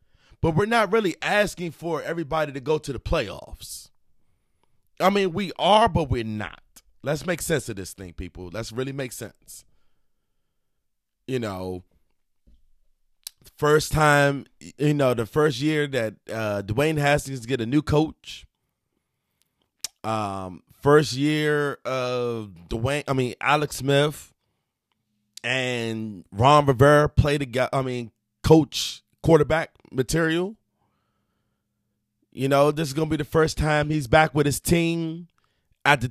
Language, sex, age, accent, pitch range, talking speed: English, male, 30-49, American, 115-160 Hz, 135 wpm